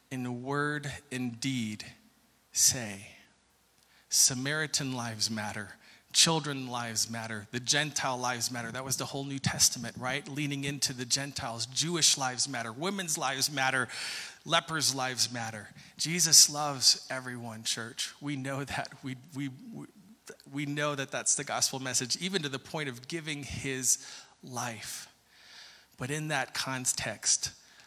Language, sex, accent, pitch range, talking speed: English, male, American, 125-145 Hz, 135 wpm